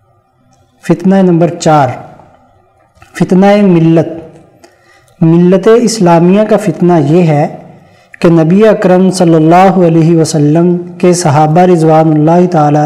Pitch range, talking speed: 160-190 Hz, 105 wpm